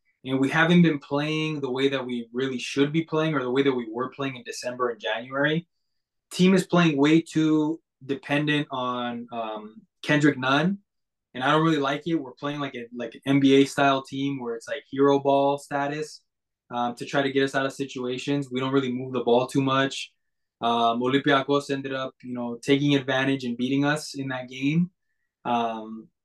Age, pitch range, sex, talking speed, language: 20-39, 125-150 Hz, male, 195 wpm, English